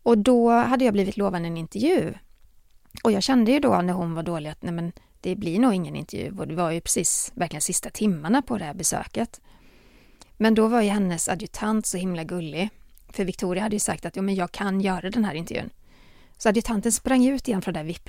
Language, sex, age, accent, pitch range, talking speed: Swedish, female, 30-49, native, 170-220 Hz, 220 wpm